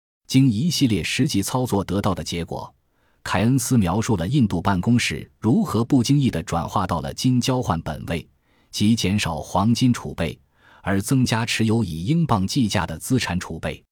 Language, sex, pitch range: Chinese, male, 85-115 Hz